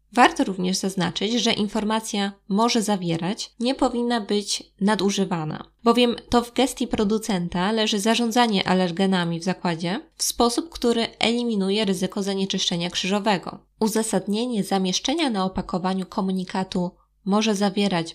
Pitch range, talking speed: 190-235 Hz, 115 wpm